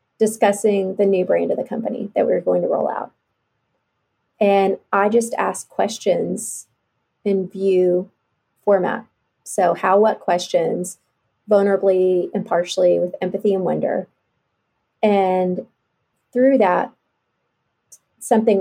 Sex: female